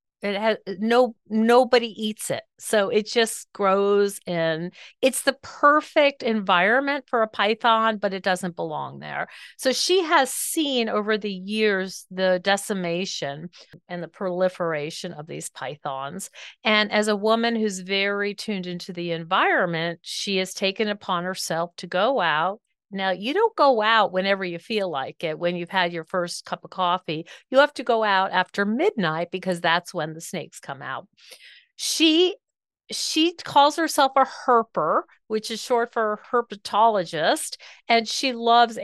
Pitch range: 180-230 Hz